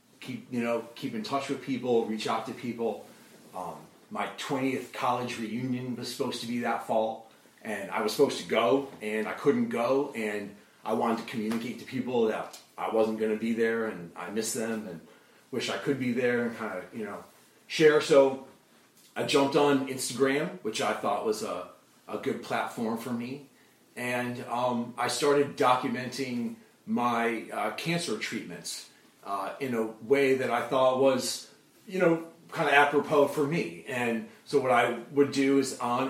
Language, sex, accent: English, male, American